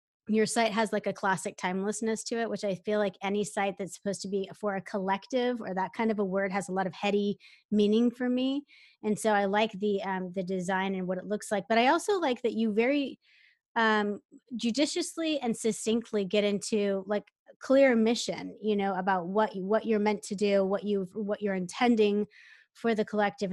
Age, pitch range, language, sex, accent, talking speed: 20-39, 200-230 Hz, English, female, American, 210 wpm